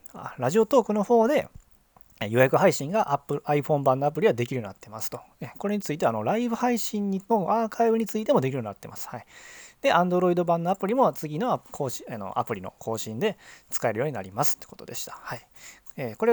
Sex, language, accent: male, Japanese, native